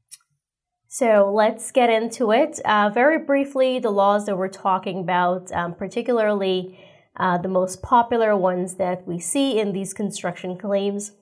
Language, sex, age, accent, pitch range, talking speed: English, female, 30-49, American, 180-225 Hz, 150 wpm